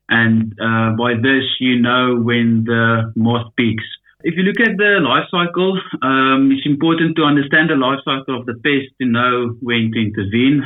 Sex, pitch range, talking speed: male, 115-135 Hz, 185 wpm